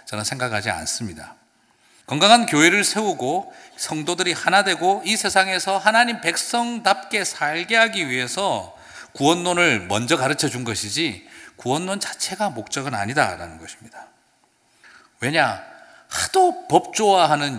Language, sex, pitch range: Korean, male, 140-210 Hz